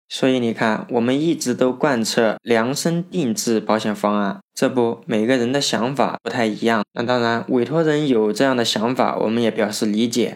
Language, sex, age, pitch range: Chinese, male, 20-39, 110-135 Hz